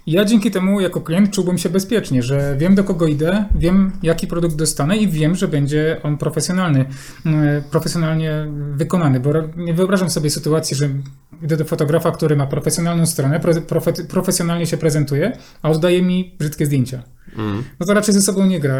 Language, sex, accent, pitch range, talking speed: Polish, male, native, 150-175 Hz, 175 wpm